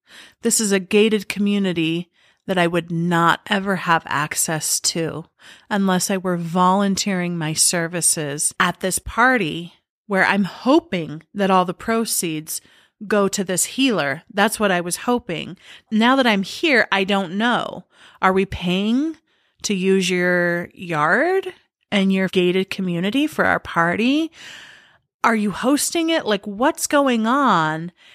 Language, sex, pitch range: English, female, 175-230 Hz